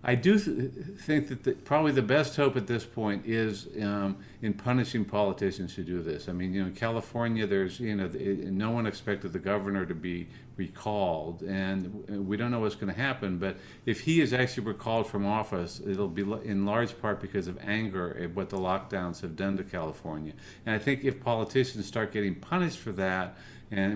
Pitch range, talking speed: 100-125 Hz, 200 wpm